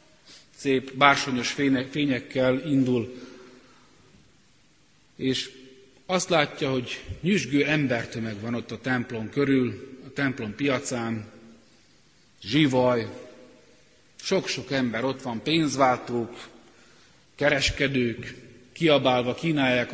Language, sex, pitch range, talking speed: Hungarian, male, 120-140 Hz, 80 wpm